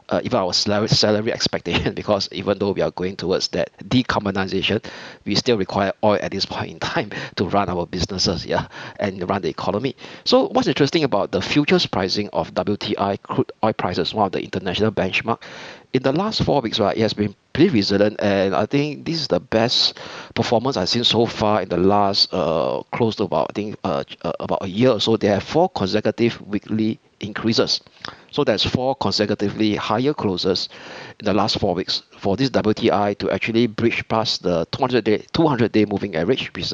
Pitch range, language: 100-120 Hz, English